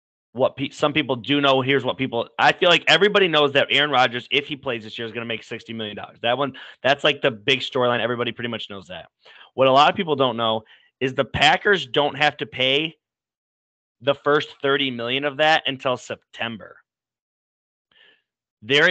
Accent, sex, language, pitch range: American, male, English, 115-135 Hz